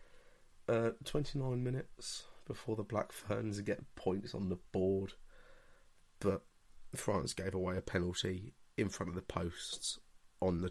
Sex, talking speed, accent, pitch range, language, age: male, 140 wpm, British, 90-105 Hz, English, 30-49